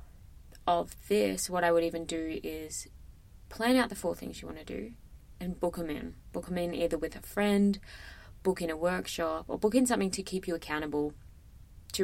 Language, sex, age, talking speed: English, female, 20-39, 205 wpm